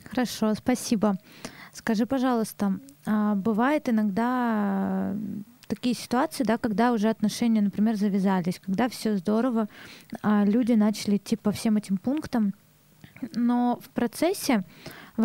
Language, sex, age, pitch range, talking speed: Russian, female, 20-39, 205-245 Hz, 115 wpm